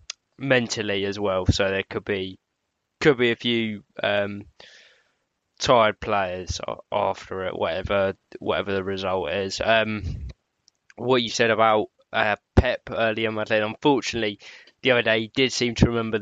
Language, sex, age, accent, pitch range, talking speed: English, male, 10-29, British, 100-115 Hz, 140 wpm